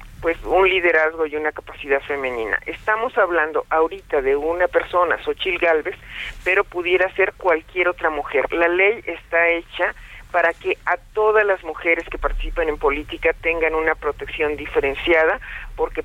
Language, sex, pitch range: Spanish, male, 150-180 Hz